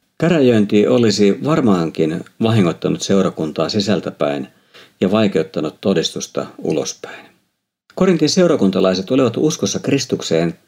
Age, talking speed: 50-69, 85 wpm